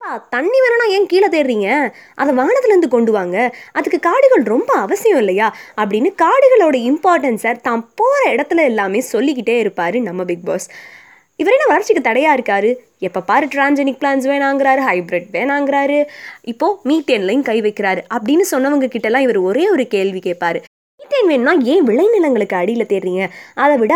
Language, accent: Tamil, native